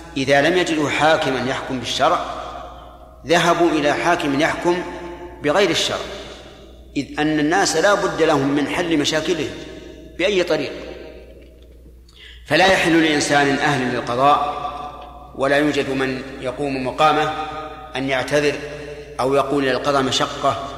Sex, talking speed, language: male, 115 wpm, Arabic